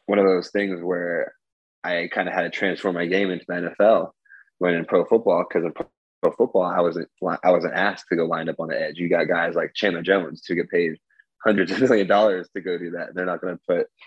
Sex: male